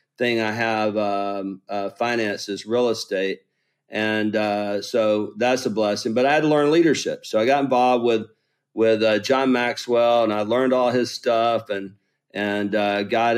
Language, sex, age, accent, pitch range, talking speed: English, male, 40-59, American, 110-125 Hz, 175 wpm